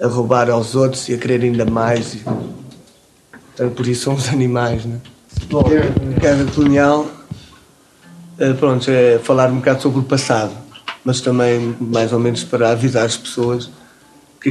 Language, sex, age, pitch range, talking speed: Portuguese, male, 20-39, 120-135 Hz, 150 wpm